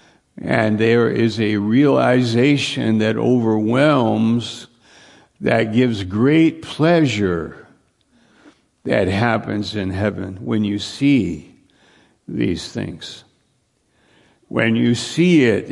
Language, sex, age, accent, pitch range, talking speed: English, male, 60-79, American, 105-125 Hz, 90 wpm